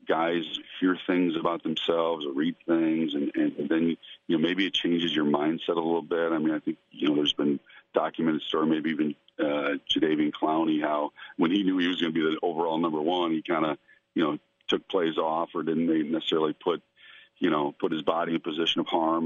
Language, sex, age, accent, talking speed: English, male, 50-69, American, 220 wpm